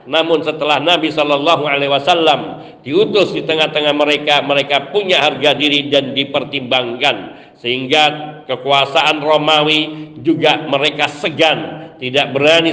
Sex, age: male, 50-69